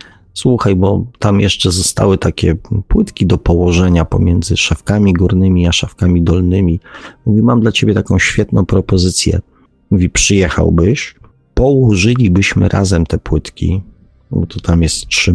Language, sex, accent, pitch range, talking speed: Polish, male, native, 85-100 Hz, 130 wpm